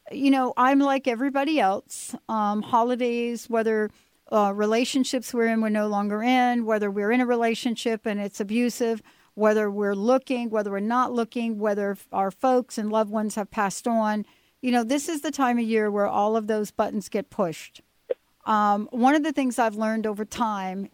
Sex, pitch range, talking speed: female, 205-245 Hz, 185 wpm